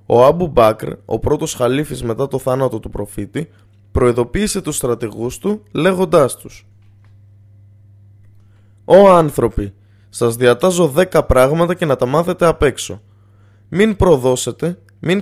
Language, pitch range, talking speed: Greek, 100-160 Hz, 125 wpm